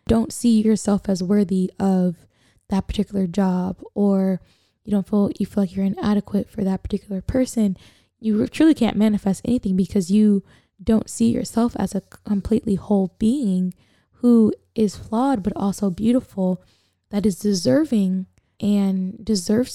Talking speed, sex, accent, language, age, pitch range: 145 wpm, female, American, English, 10-29, 195-230 Hz